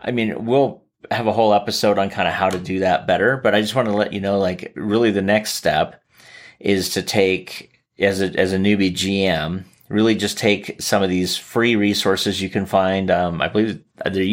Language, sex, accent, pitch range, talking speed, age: English, male, American, 95-105 Hz, 215 wpm, 30-49